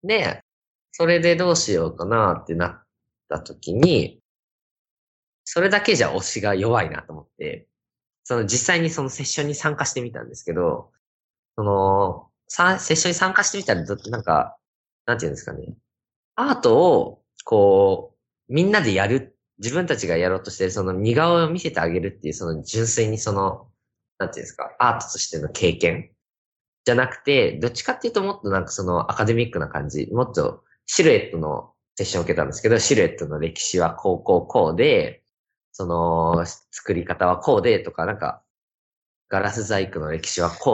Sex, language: male, Japanese